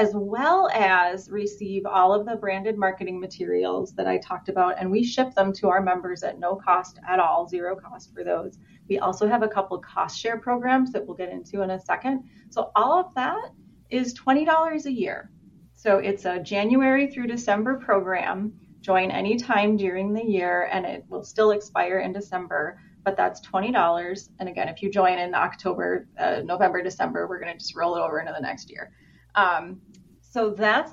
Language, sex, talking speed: English, female, 190 wpm